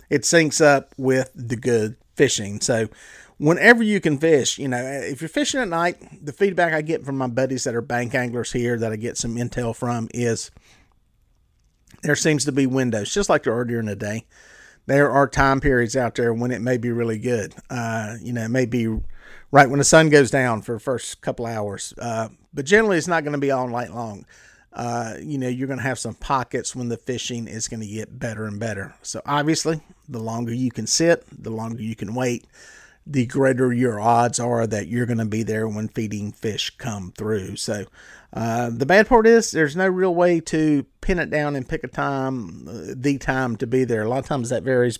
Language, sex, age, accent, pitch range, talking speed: English, male, 40-59, American, 115-140 Hz, 220 wpm